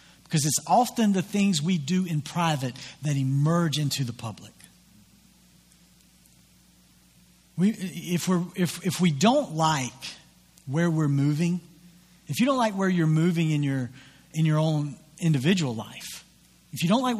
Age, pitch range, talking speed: 40-59, 150-205 Hz, 150 wpm